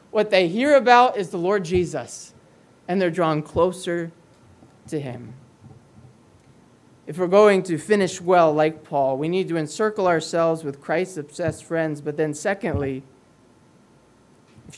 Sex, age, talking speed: male, 20-39, 140 wpm